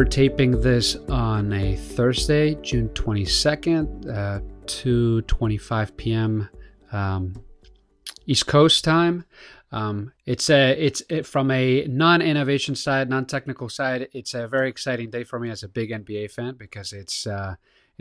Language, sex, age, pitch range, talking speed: English, male, 30-49, 100-125 Hz, 140 wpm